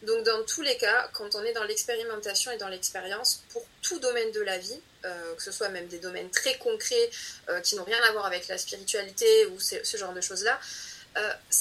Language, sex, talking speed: French, female, 235 wpm